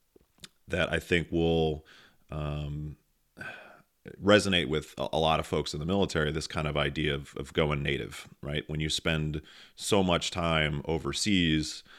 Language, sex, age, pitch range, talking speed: English, male, 30-49, 70-80 Hz, 150 wpm